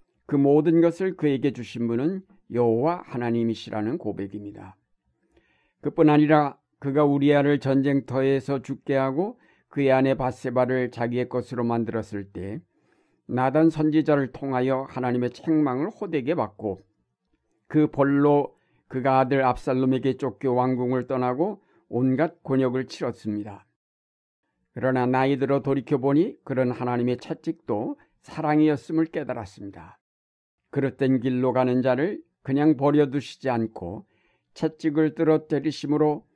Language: Korean